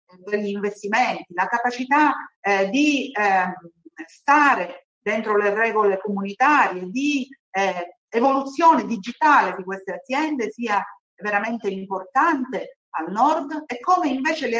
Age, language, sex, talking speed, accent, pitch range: 50-69, Italian, female, 115 wpm, native, 190-280 Hz